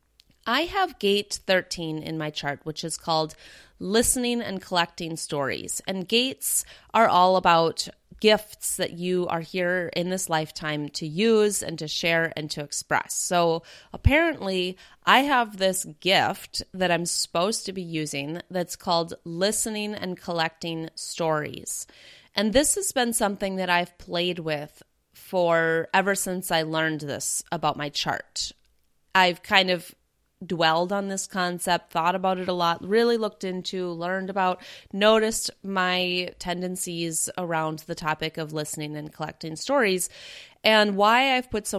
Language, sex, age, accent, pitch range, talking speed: English, female, 30-49, American, 165-200 Hz, 150 wpm